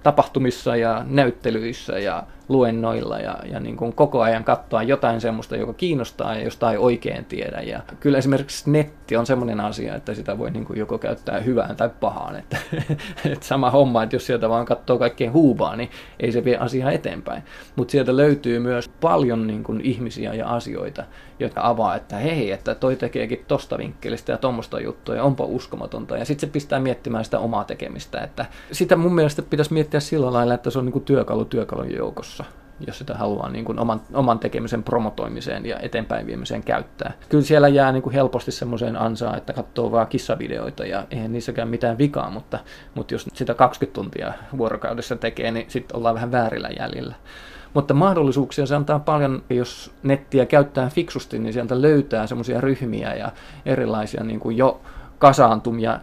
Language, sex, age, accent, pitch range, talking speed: Finnish, male, 20-39, native, 115-140 Hz, 175 wpm